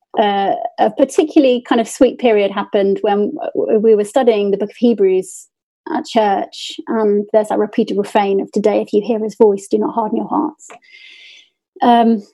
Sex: female